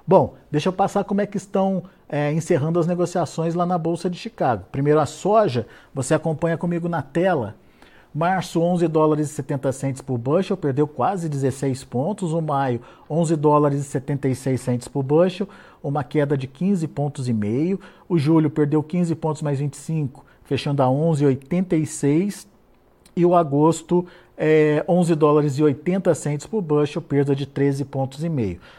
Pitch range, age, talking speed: 140-170 Hz, 50-69, 165 wpm